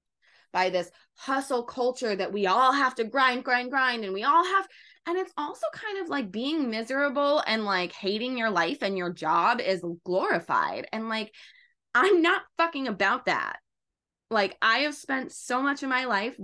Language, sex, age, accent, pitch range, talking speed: English, female, 20-39, American, 200-280 Hz, 185 wpm